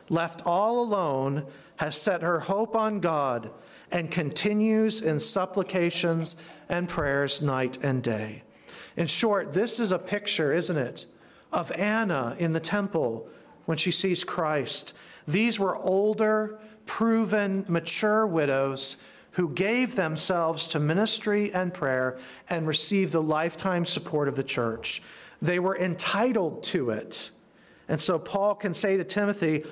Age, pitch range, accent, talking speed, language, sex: 40-59, 145-195 Hz, American, 135 wpm, English, male